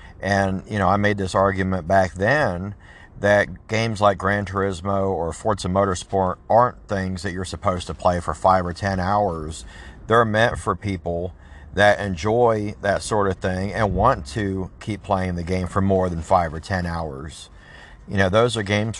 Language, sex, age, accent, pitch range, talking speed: English, male, 40-59, American, 95-110 Hz, 185 wpm